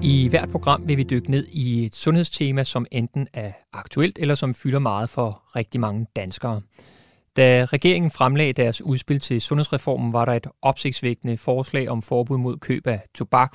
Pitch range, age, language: 120-145 Hz, 30-49, Danish